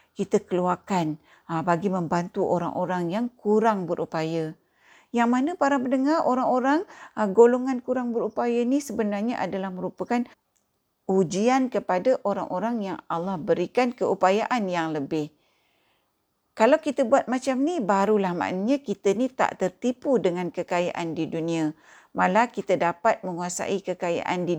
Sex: female